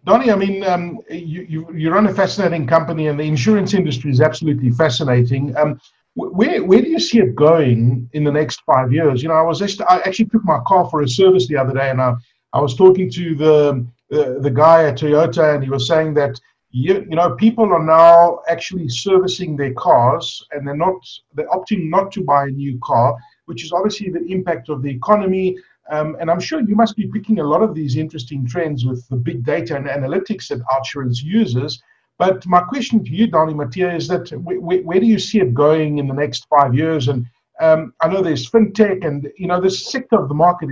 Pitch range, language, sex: 140-185 Hz, English, male